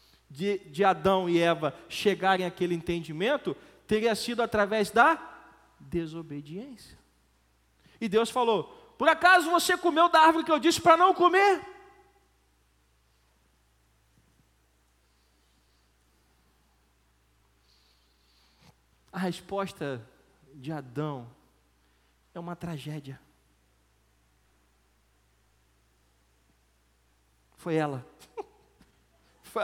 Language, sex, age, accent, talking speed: Portuguese, male, 40-59, Brazilian, 75 wpm